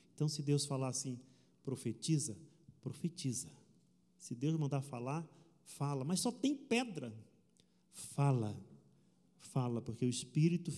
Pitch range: 135-195 Hz